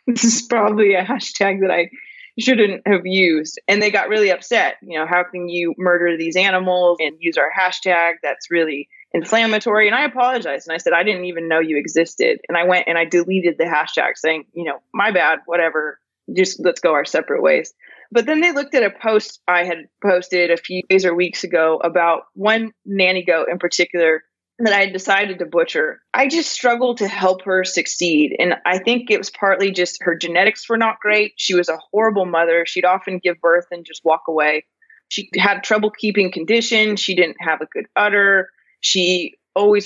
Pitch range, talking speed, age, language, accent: 175-215 Hz, 200 wpm, 20-39, English, American